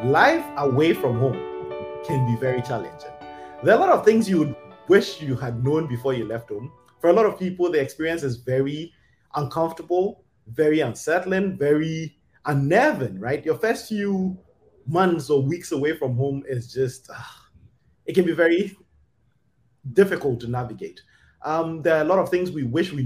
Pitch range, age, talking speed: 130-175 Hz, 20-39, 175 wpm